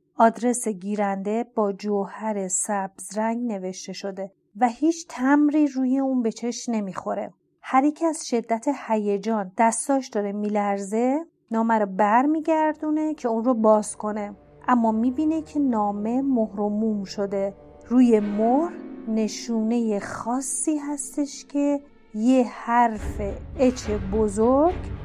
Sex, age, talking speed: female, 30-49, 115 wpm